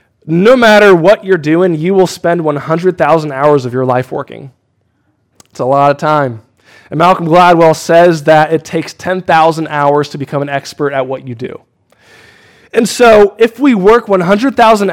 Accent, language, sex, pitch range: American, English, male, 140-180 Hz